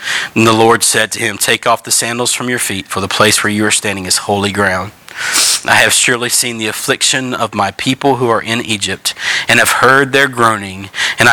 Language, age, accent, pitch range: English, 40-59, American, 110-130 Hz